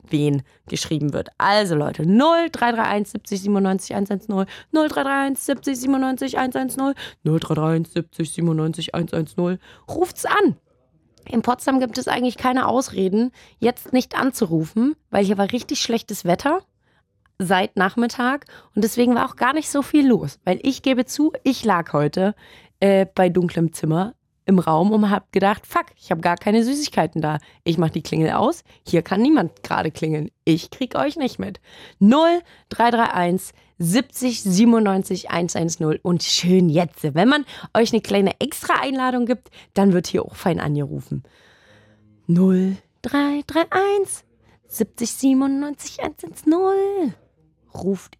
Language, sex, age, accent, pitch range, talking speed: German, female, 20-39, German, 170-260 Hz, 130 wpm